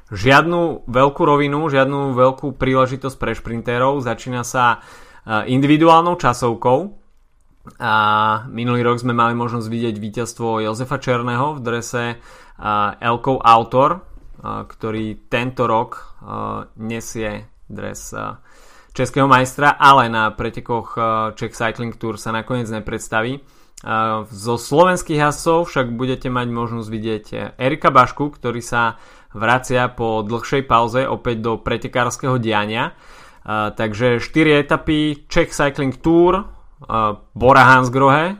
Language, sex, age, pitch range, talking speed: Slovak, male, 20-39, 110-135 Hz, 115 wpm